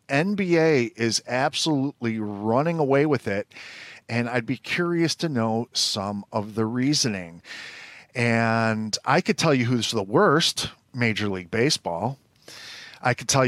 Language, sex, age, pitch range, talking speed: English, male, 40-59, 115-150 Hz, 140 wpm